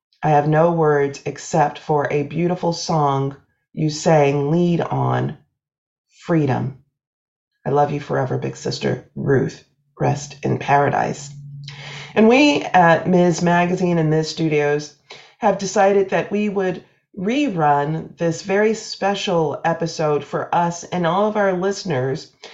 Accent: American